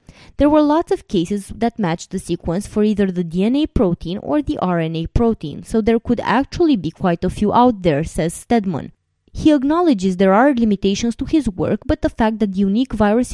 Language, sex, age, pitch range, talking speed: English, female, 20-39, 175-250 Hz, 200 wpm